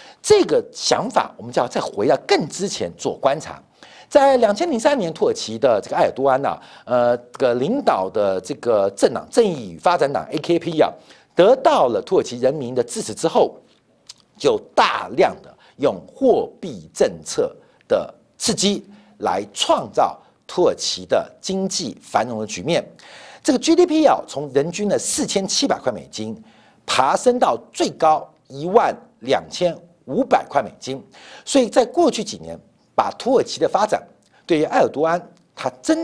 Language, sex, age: Chinese, male, 50-69